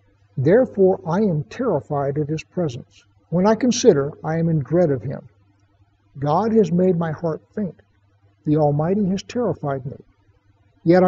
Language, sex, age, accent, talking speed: English, male, 60-79, American, 150 wpm